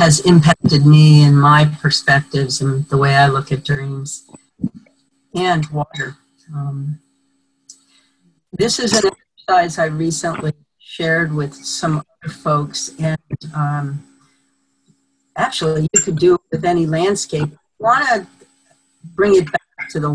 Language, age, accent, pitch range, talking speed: English, 50-69, American, 140-170 Hz, 130 wpm